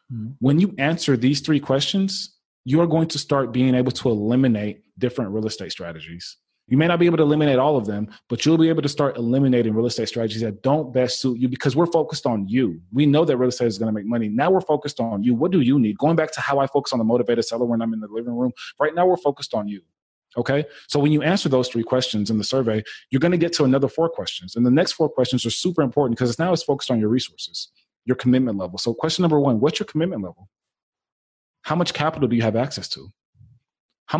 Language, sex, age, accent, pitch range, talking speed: English, male, 30-49, American, 115-160 Hz, 255 wpm